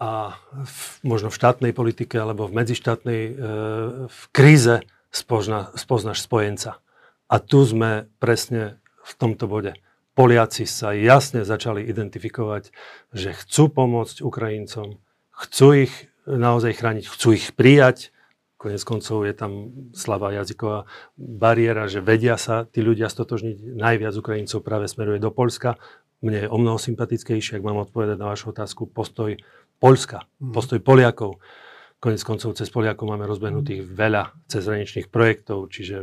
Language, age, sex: Slovak, 40-59, male